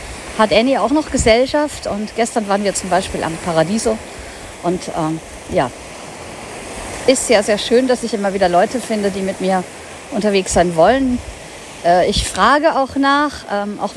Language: German